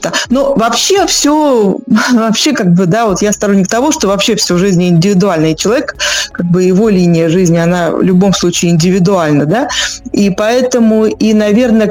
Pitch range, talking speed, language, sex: 195-245 Hz, 160 wpm, Russian, female